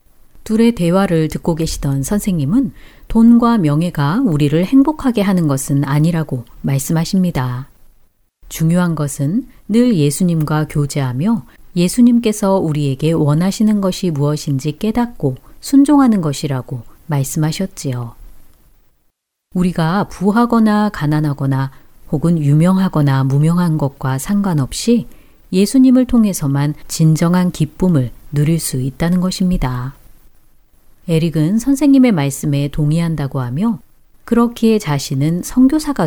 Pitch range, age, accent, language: 140-205 Hz, 40-59, native, Korean